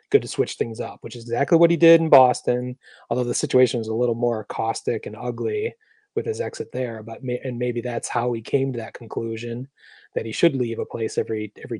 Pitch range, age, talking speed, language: 125-175 Hz, 30-49, 230 wpm, English